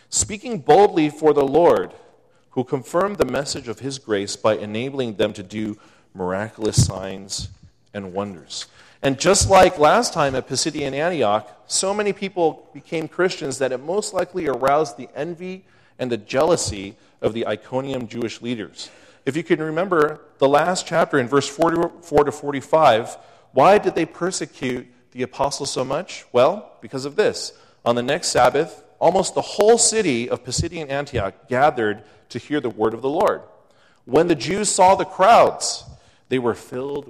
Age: 40-59